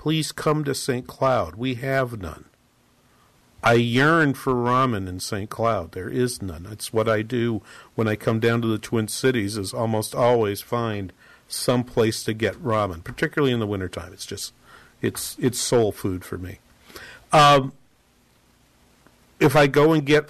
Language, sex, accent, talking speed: English, male, American, 170 wpm